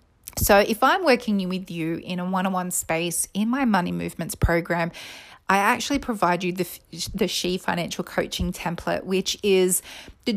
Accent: Australian